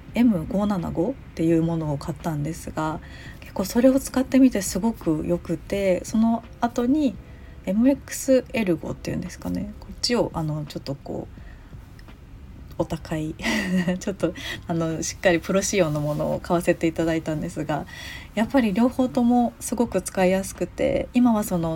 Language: Japanese